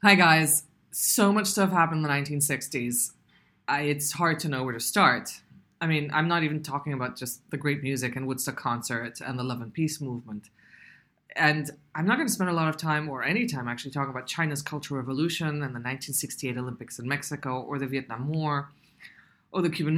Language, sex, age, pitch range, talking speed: English, female, 20-39, 135-185 Hz, 205 wpm